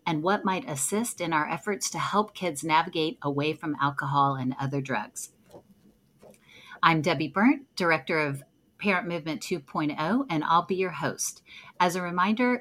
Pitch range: 170-240 Hz